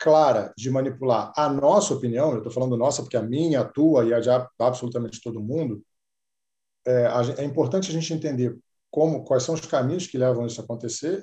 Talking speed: 190 wpm